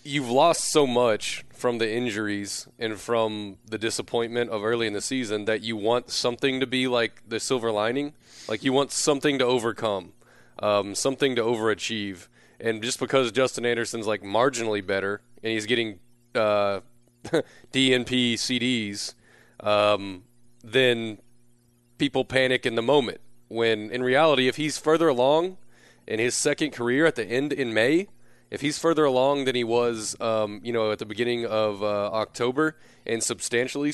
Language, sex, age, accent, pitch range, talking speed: English, male, 30-49, American, 110-130 Hz, 160 wpm